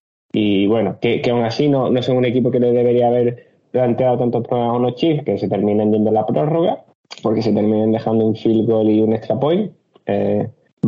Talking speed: 215 wpm